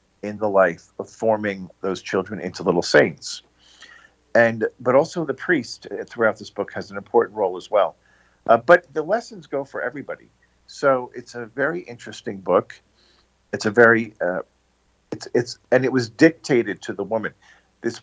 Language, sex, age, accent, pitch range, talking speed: English, male, 50-69, American, 105-135 Hz, 170 wpm